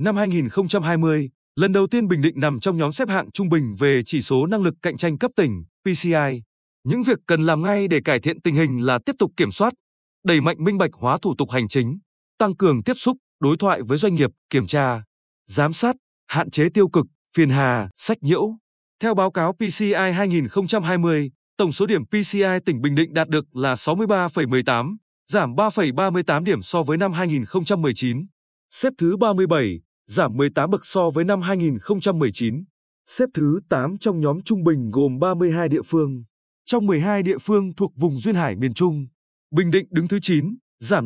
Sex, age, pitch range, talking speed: male, 20-39, 145-200 Hz, 190 wpm